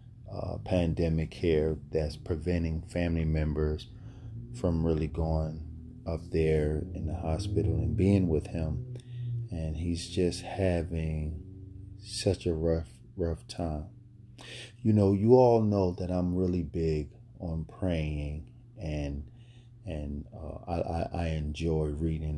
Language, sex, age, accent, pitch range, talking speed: English, male, 40-59, American, 80-105 Hz, 125 wpm